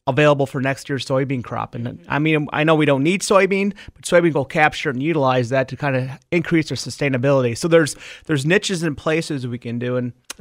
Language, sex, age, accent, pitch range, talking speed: English, male, 30-49, American, 130-160 Hz, 225 wpm